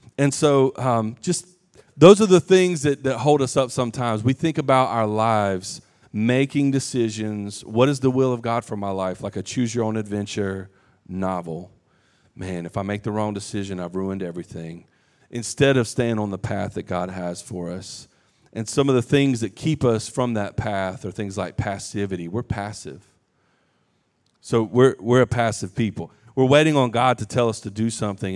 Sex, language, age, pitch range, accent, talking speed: male, English, 40-59, 100-135 Hz, American, 195 wpm